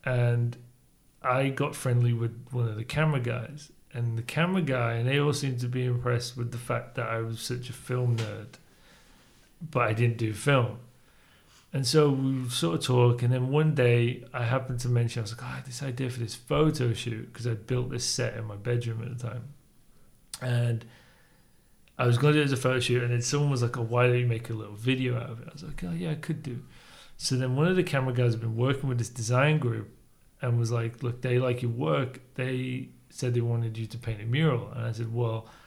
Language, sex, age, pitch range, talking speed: English, male, 40-59, 120-135 Hz, 240 wpm